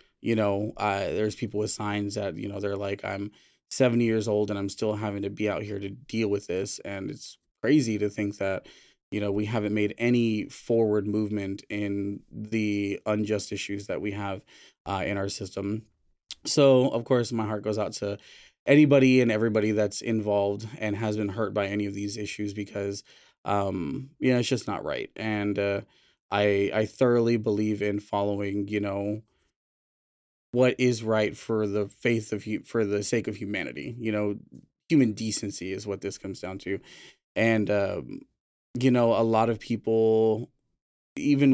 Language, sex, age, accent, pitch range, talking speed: English, male, 20-39, American, 100-115 Hz, 180 wpm